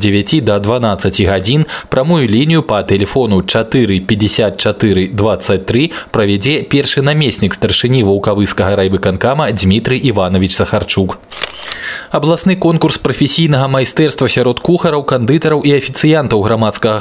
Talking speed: 90 wpm